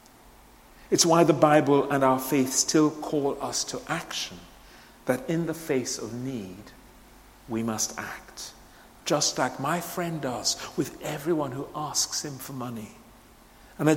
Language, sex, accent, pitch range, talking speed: English, male, British, 120-150 Hz, 150 wpm